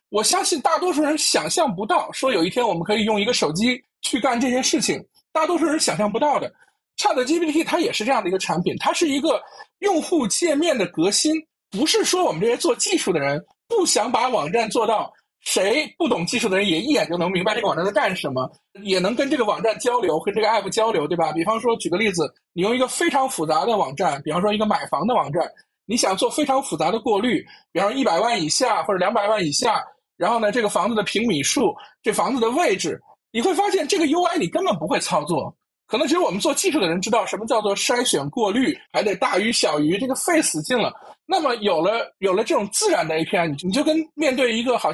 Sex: male